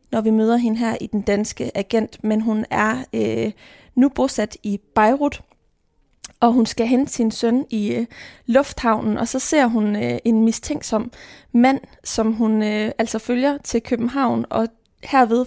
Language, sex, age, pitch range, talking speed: Danish, female, 20-39, 215-250 Hz, 170 wpm